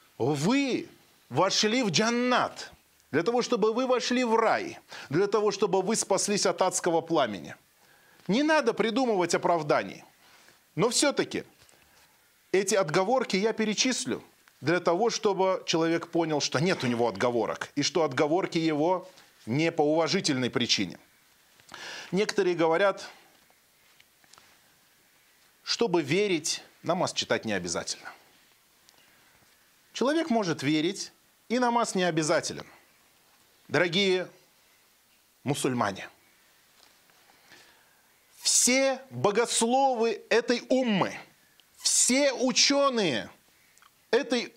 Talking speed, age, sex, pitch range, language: 95 wpm, 30-49, male, 170-245 Hz, Russian